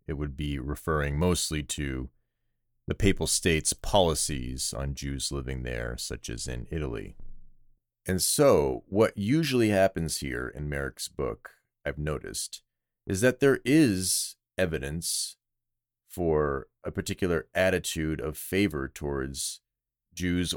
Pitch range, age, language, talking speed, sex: 70-95 Hz, 30-49, English, 125 wpm, male